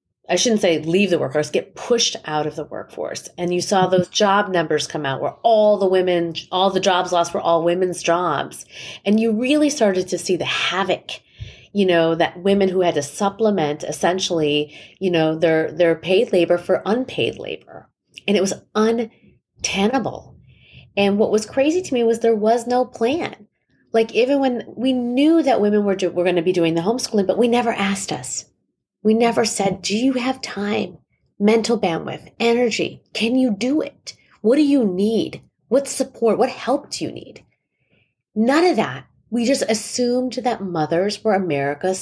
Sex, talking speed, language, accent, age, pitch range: female, 185 wpm, English, American, 30-49, 175-235 Hz